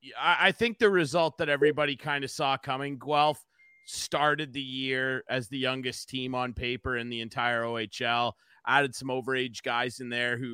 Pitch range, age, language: 130-155 Hz, 30-49, English